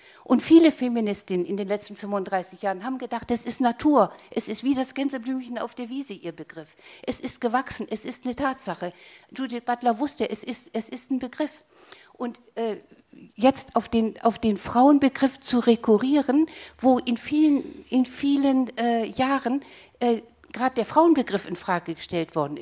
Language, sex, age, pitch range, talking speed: German, female, 50-69, 200-250 Hz, 170 wpm